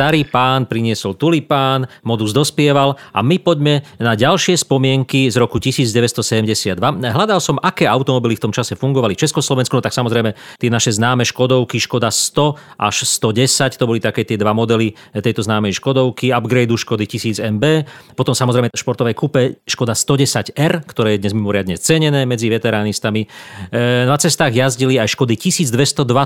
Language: Slovak